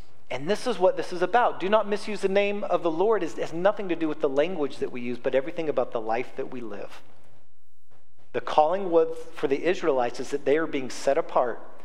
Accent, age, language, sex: American, 40-59, English, male